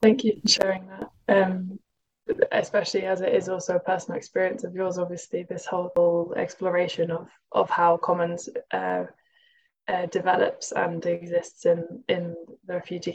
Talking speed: 150 wpm